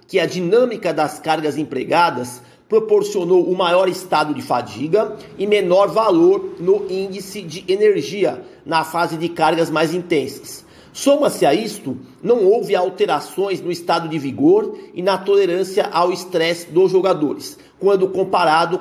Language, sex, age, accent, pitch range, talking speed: Portuguese, male, 40-59, Brazilian, 170-275 Hz, 140 wpm